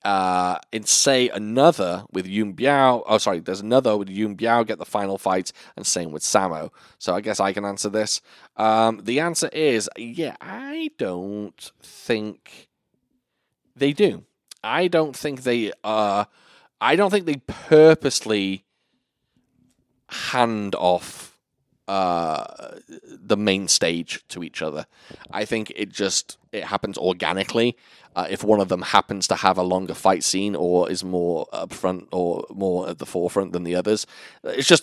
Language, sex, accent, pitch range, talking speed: English, male, British, 90-125 Hz, 160 wpm